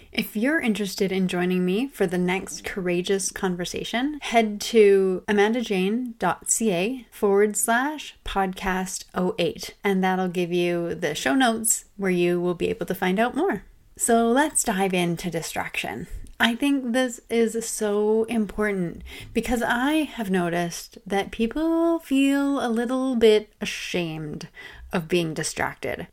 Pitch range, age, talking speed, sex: 185-245 Hz, 30-49, 135 wpm, female